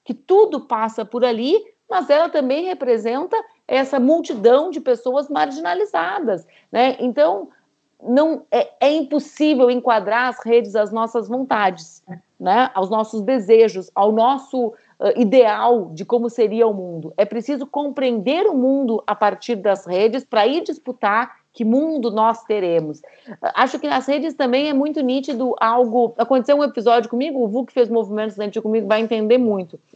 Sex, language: female, Portuguese